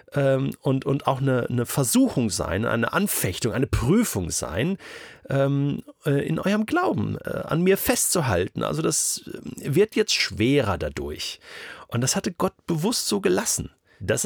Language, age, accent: German, 40-59, German